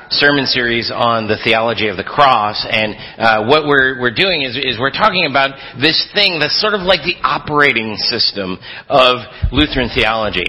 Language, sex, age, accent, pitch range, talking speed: English, male, 40-59, American, 110-140 Hz, 175 wpm